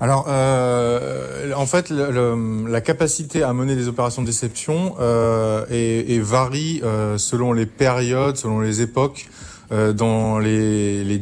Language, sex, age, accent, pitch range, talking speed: French, male, 20-39, French, 110-135 Hz, 135 wpm